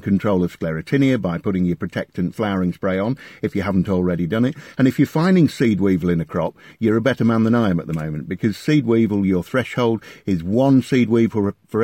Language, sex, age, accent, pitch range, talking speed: English, male, 50-69, British, 95-125 Hz, 230 wpm